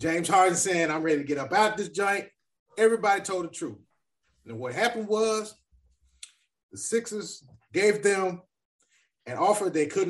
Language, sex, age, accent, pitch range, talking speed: English, male, 30-49, American, 150-225 Hz, 165 wpm